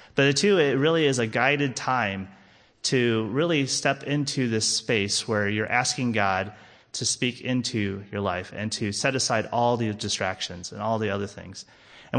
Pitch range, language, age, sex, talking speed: 105-130 Hz, English, 30-49, male, 180 wpm